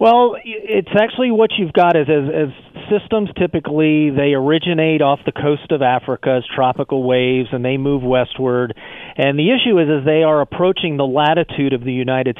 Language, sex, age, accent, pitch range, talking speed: English, male, 40-59, American, 135-160 Hz, 185 wpm